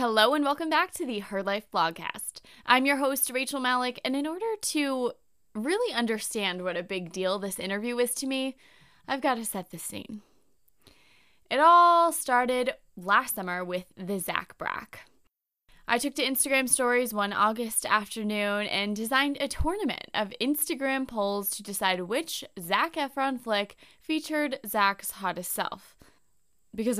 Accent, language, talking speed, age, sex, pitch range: American, English, 155 wpm, 20-39, female, 195-260 Hz